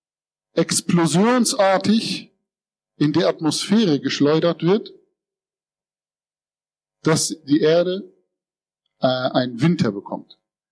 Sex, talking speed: male, 75 wpm